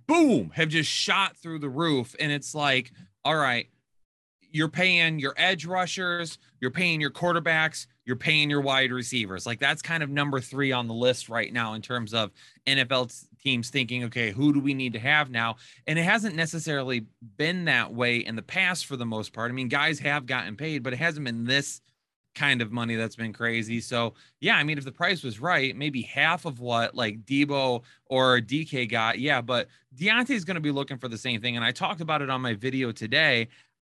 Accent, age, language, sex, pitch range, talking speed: American, 20-39, English, male, 120-150 Hz, 215 wpm